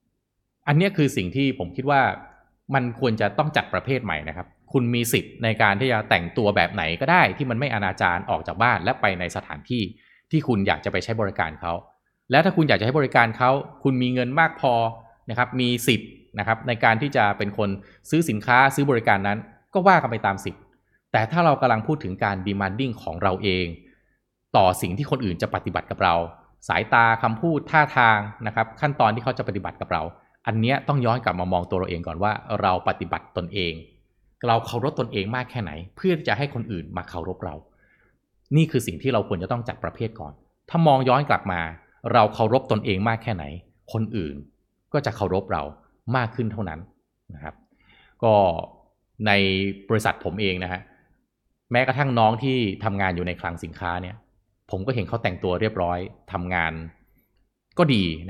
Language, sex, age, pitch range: Thai, male, 20-39, 90-125 Hz